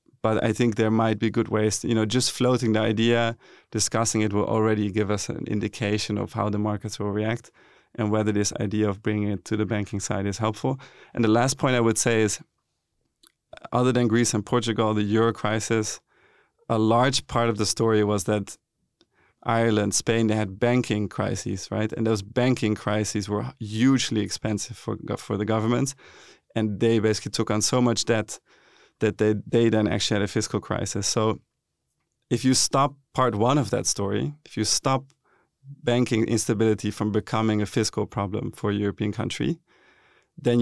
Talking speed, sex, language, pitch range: 185 wpm, male, English, 105-120 Hz